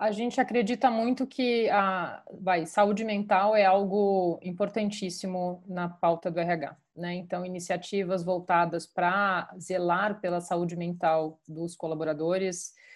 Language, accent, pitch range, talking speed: Portuguese, Brazilian, 175-210 Hz, 125 wpm